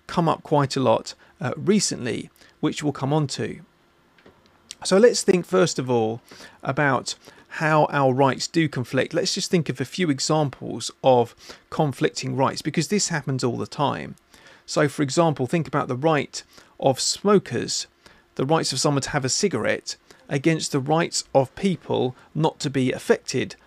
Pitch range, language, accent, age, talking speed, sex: 130-160 Hz, English, British, 40-59, 165 wpm, male